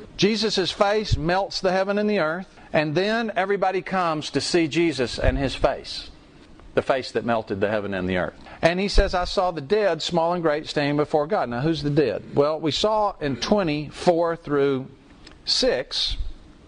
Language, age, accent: English, 50-69, American